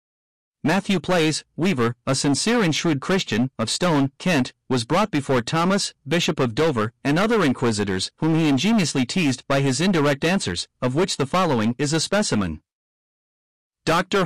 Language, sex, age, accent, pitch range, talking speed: English, male, 40-59, American, 130-180 Hz, 155 wpm